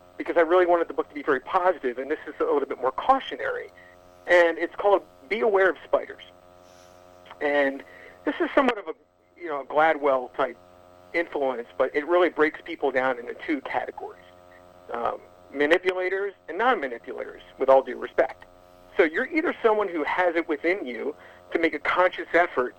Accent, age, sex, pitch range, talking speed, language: American, 50-69, male, 130-220 Hz, 175 wpm, English